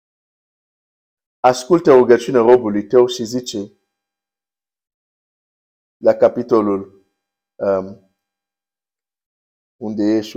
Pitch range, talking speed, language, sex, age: 100-155 Hz, 65 wpm, Romanian, male, 50-69